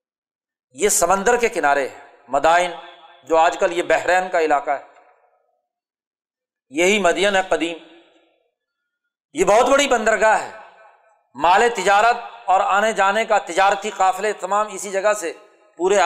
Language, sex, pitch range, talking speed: Urdu, male, 175-245 Hz, 135 wpm